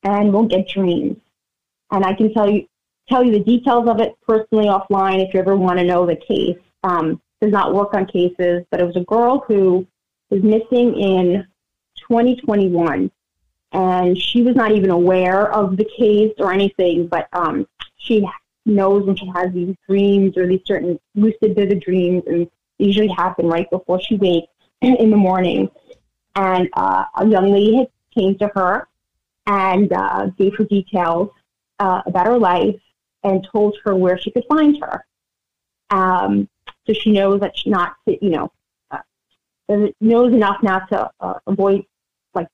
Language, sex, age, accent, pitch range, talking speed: English, female, 20-39, American, 180-215 Hz, 175 wpm